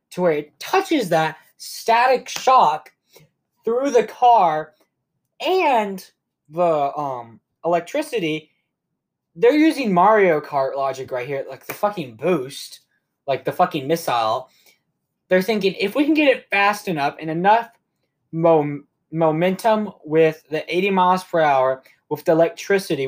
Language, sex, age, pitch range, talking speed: English, male, 20-39, 145-205 Hz, 130 wpm